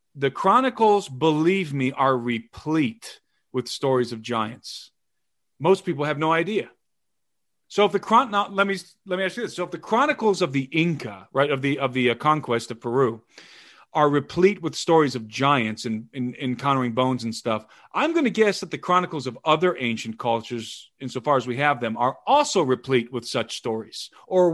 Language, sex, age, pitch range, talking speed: English, male, 40-59, 130-190 Hz, 190 wpm